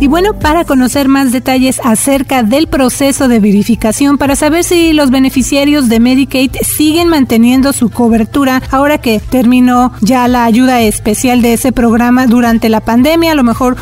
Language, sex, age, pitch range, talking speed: Spanish, female, 30-49, 245-300 Hz, 165 wpm